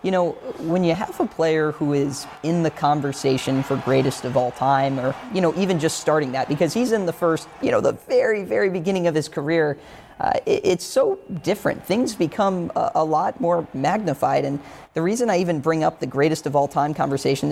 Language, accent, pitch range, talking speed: English, American, 145-170 Hz, 215 wpm